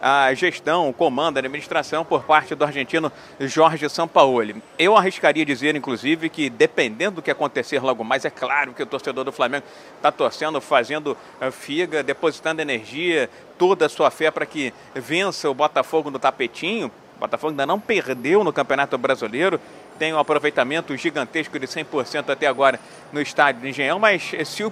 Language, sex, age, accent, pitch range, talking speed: Portuguese, male, 40-59, Brazilian, 150-195 Hz, 170 wpm